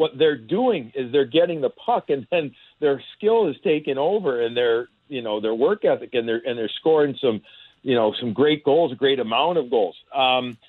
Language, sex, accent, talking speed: English, male, American, 220 wpm